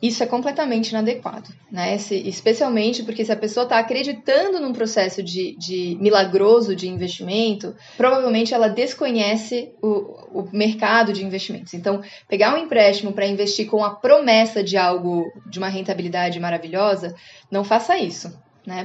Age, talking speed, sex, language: 20-39, 150 wpm, female, Portuguese